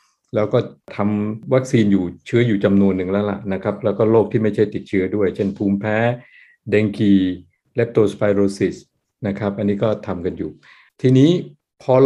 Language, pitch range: Thai, 100-125 Hz